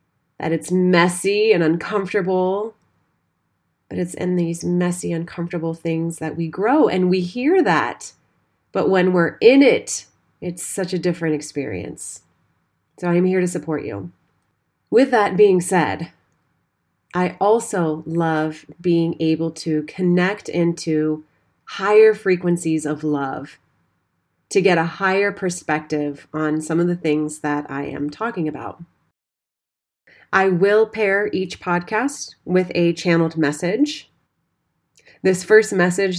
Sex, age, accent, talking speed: female, 30-49, American, 130 wpm